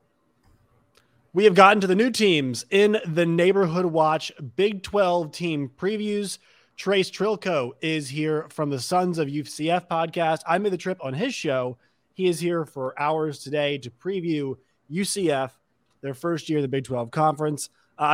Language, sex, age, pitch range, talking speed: English, male, 30-49, 125-170 Hz, 165 wpm